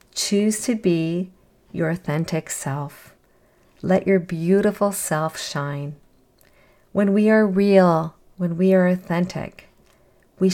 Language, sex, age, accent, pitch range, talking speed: English, female, 50-69, American, 170-205 Hz, 115 wpm